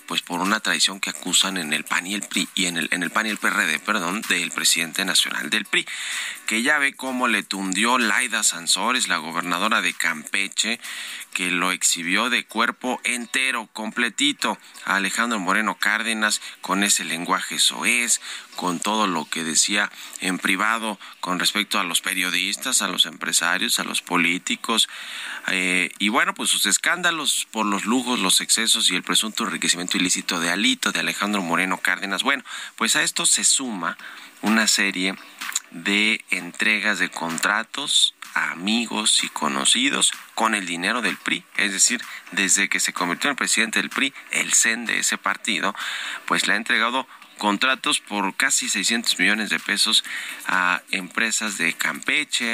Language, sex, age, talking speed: Spanish, male, 30-49, 165 wpm